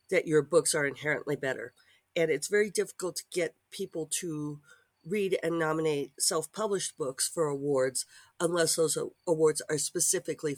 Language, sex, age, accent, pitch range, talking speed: English, female, 50-69, American, 125-185 Hz, 145 wpm